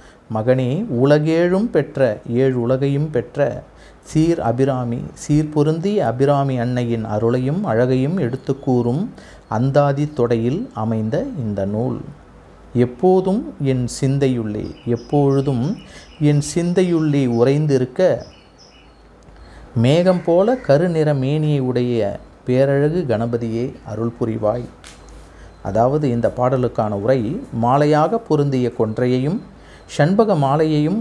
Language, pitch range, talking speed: Tamil, 115-150 Hz, 75 wpm